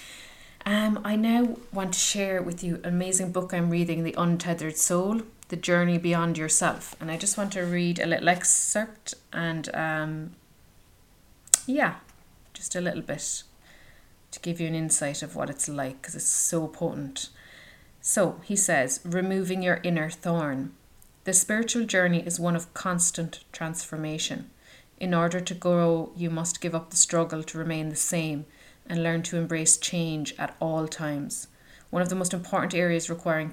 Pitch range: 160-180 Hz